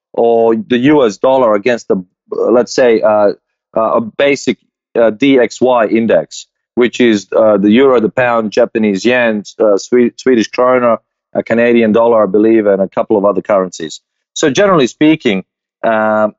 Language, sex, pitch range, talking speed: English, male, 110-140 Hz, 155 wpm